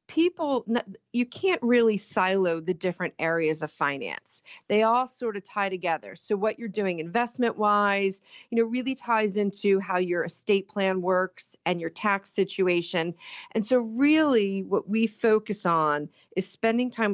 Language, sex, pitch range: English, female, 180-225 Hz